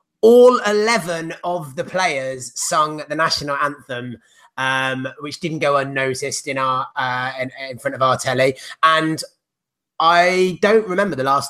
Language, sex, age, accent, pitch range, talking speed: English, male, 30-49, British, 135-175 Hz, 150 wpm